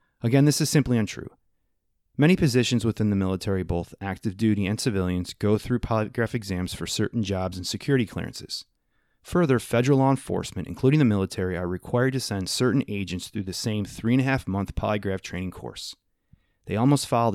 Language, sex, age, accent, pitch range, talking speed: English, male, 30-49, American, 95-130 Hz, 165 wpm